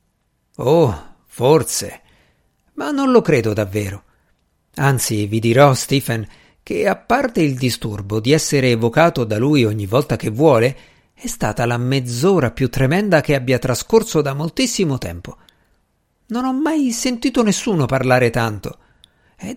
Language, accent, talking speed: Italian, native, 140 wpm